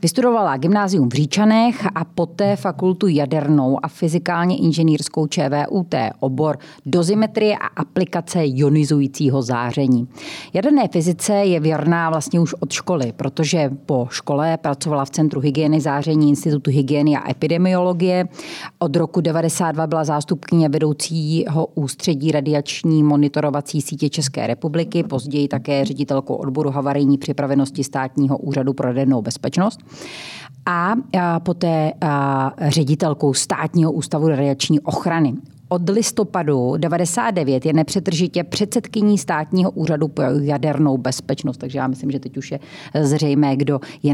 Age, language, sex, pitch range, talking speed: 30-49, Czech, female, 140-170 Hz, 120 wpm